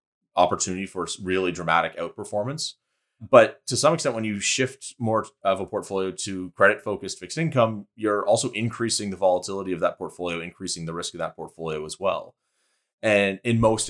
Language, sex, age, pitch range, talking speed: English, male, 30-49, 90-110 Hz, 170 wpm